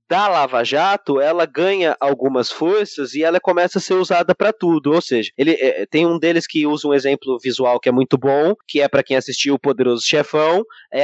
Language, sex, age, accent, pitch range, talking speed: Portuguese, male, 20-39, Brazilian, 140-195 Hz, 215 wpm